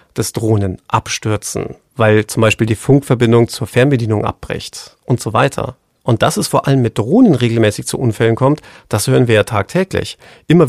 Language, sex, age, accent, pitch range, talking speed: German, male, 40-59, German, 115-160 Hz, 175 wpm